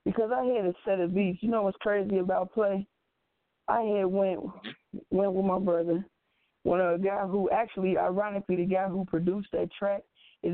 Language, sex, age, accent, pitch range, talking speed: English, female, 20-39, American, 175-205 Hz, 195 wpm